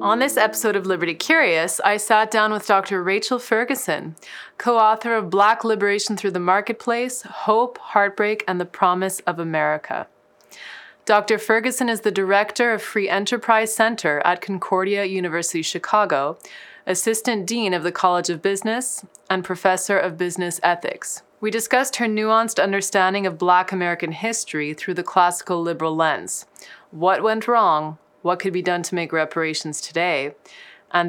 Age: 30-49